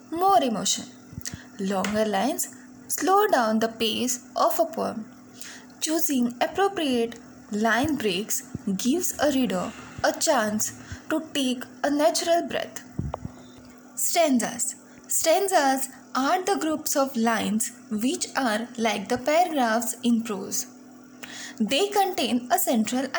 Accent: Indian